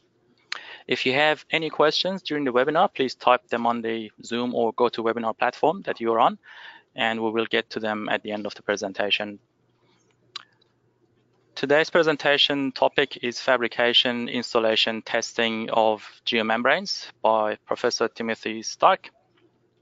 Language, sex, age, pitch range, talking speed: English, male, 20-39, 110-125 Hz, 140 wpm